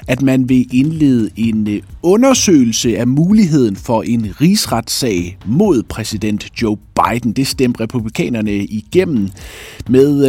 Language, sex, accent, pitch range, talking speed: Danish, male, native, 100-155 Hz, 115 wpm